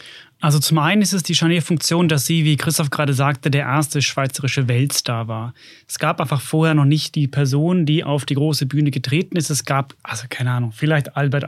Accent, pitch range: German, 140-170 Hz